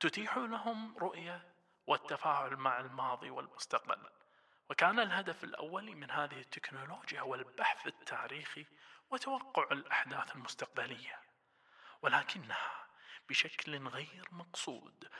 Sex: male